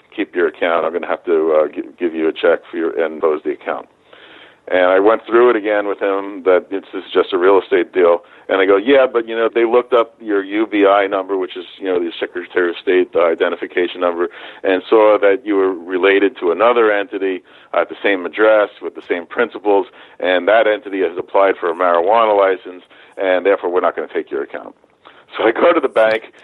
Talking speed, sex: 225 wpm, male